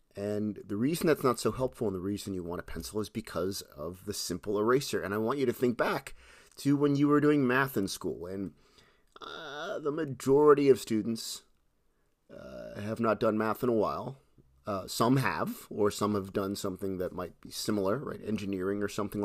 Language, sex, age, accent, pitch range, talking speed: English, male, 30-49, American, 100-135 Hz, 205 wpm